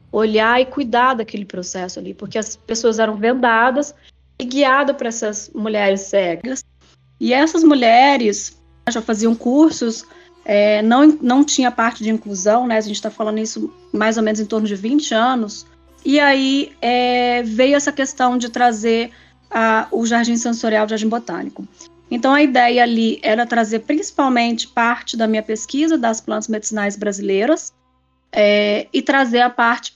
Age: 20-39